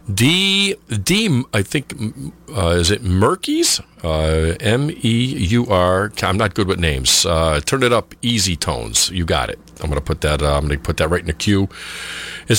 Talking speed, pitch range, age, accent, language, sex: 195 wpm, 75-105 Hz, 50-69, American, English, male